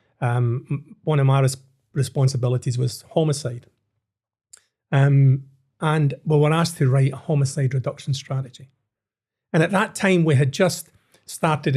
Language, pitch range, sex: English, 125-150 Hz, male